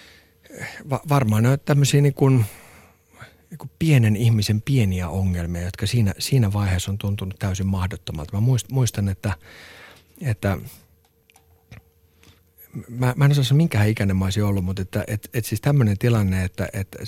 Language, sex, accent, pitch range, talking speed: Finnish, male, native, 95-125 Hz, 150 wpm